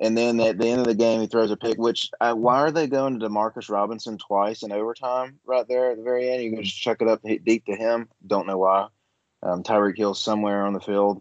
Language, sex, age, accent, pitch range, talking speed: English, male, 20-39, American, 105-135 Hz, 260 wpm